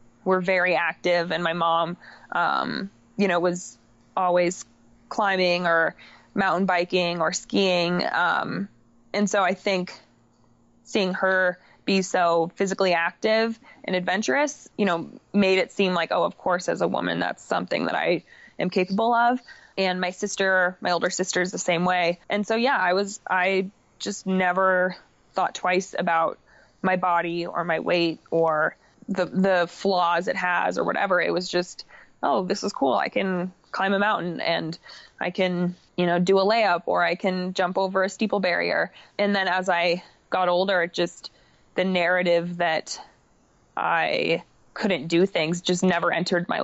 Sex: female